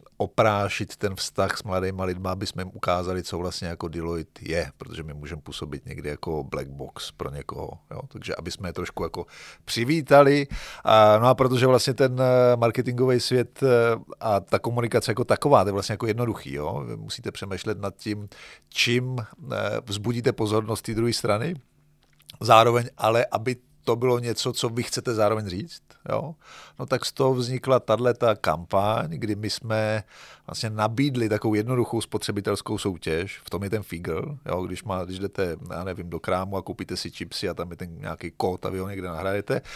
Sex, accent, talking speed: male, native, 180 wpm